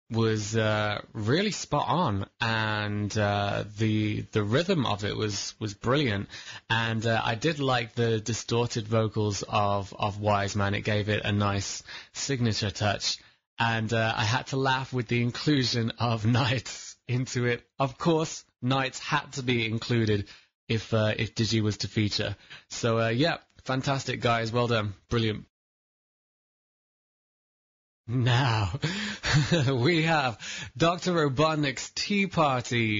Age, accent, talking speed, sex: 20-39, British, 140 wpm, male